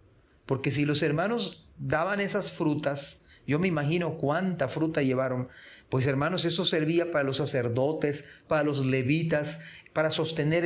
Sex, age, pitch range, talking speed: male, 40-59, 135-160 Hz, 140 wpm